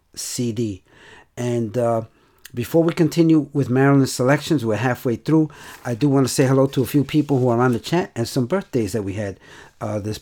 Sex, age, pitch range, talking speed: male, 50-69, 120-150 Hz, 205 wpm